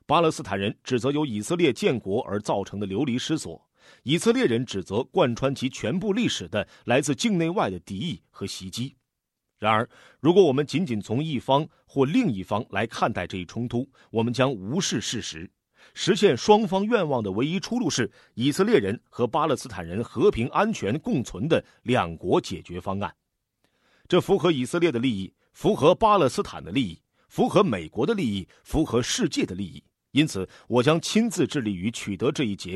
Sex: male